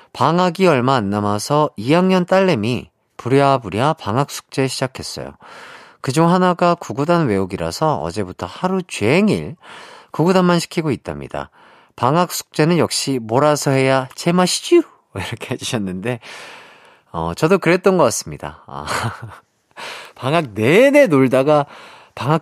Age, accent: 40-59, native